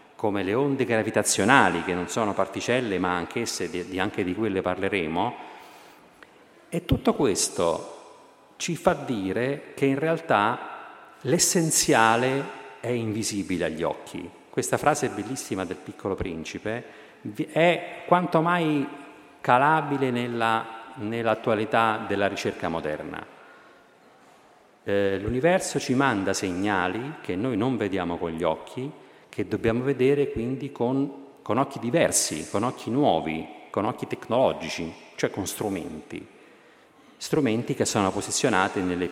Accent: native